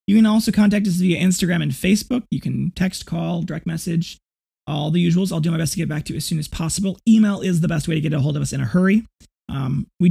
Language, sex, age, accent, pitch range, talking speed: English, male, 30-49, American, 150-190 Hz, 280 wpm